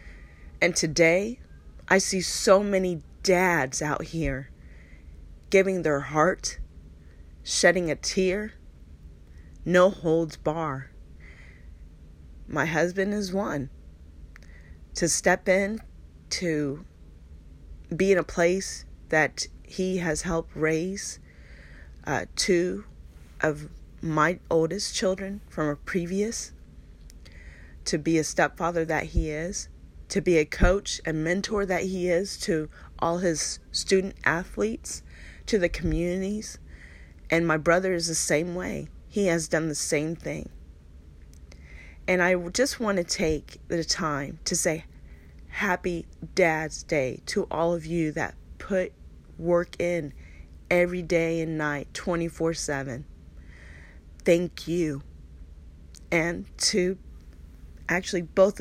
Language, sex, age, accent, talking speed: English, female, 30-49, American, 115 wpm